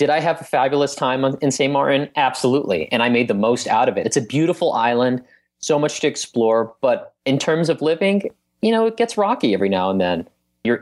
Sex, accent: male, American